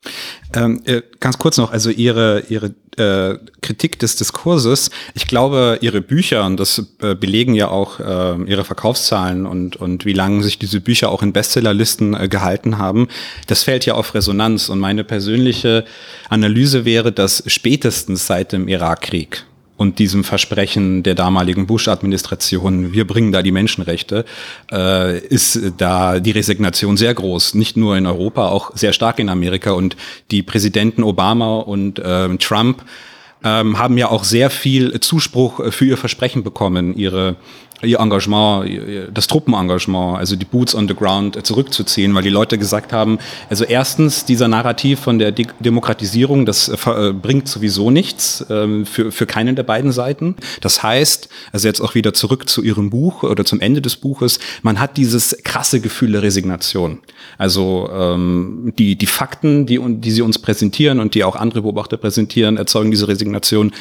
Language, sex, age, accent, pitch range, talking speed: German, male, 30-49, German, 100-120 Hz, 155 wpm